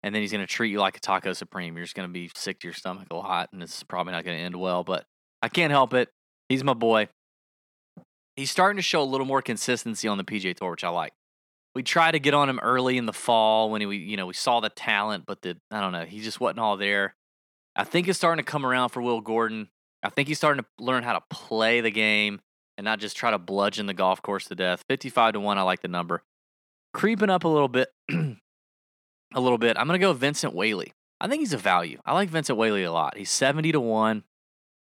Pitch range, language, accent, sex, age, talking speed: 100-135 Hz, English, American, male, 20-39, 260 wpm